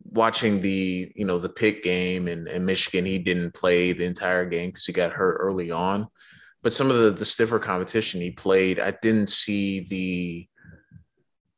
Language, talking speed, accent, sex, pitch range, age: English, 180 wpm, American, male, 90-105 Hz, 20-39